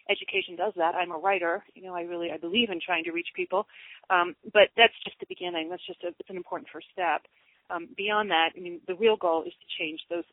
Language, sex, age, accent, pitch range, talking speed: English, female, 30-49, American, 170-210 Hz, 250 wpm